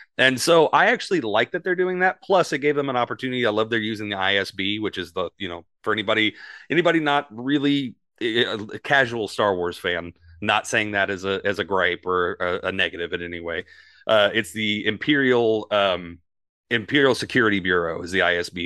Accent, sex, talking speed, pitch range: American, male, 200 wpm, 95-125 Hz